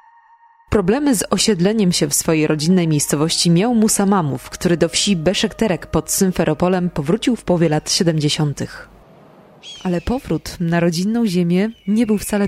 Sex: female